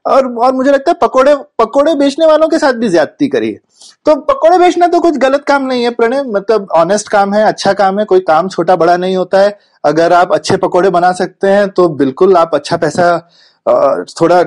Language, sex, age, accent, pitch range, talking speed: Hindi, male, 30-49, native, 185-270 Hz, 210 wpm